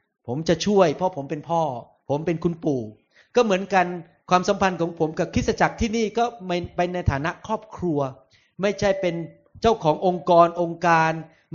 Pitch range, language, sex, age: 160-205 Hz, Thai, male, 30-49